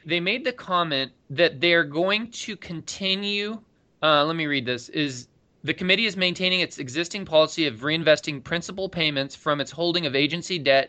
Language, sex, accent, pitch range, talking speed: English, male, American, 135-180 Hz, 180 wpm